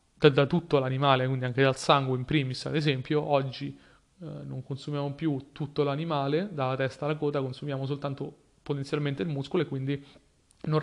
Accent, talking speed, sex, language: native, 165 wpm, male, Italian